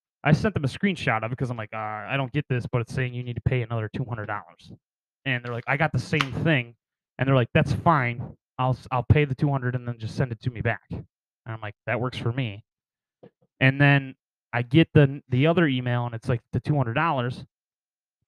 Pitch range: 120-145 Hz